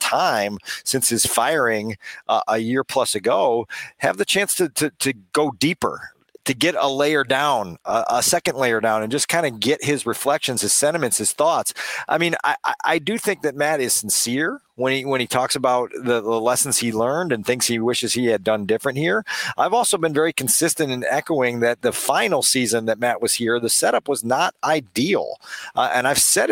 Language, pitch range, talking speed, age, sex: English, 120-155 Hz, 210 wpm, 40-59, male